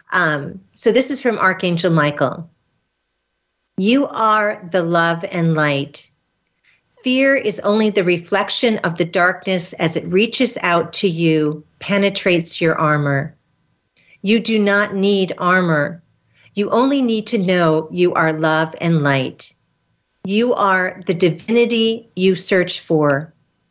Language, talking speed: English, 130 wpm